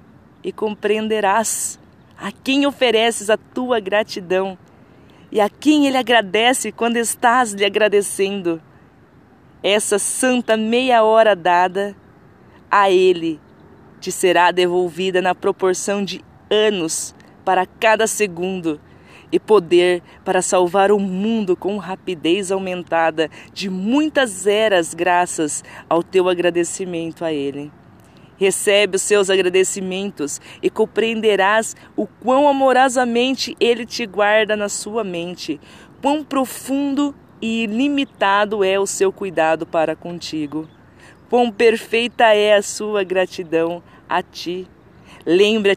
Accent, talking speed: Brazilian, 115 wpm